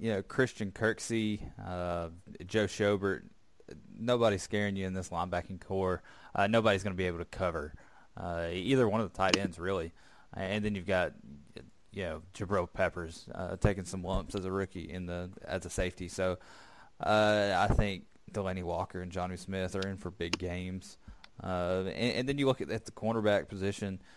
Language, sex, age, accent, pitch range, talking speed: English, male, 20-39, American, 90-105 Hz, 185 wpm